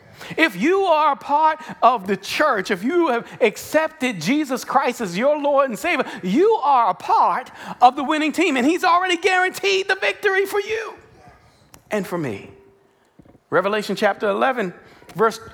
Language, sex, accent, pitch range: English, male, American, 215-315 Hz